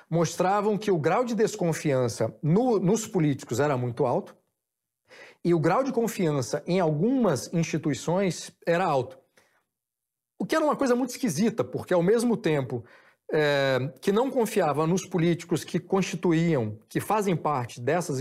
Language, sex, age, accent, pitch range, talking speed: Portuguese, male, 40-59, Brazilian, 150-210 Hz, 140 wpm